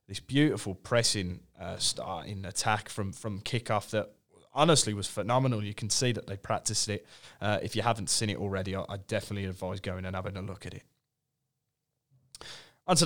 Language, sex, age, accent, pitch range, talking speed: English, male, 20-39, British, 100-130 Hz, 180 wpm